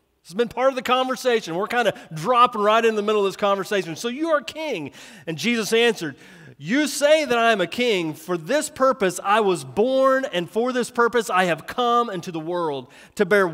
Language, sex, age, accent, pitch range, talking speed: English, male, 30-49, American, 155-255 Hz, 220 wpm